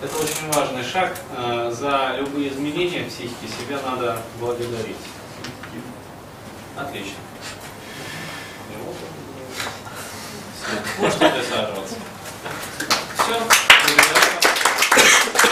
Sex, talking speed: male, 60 wpm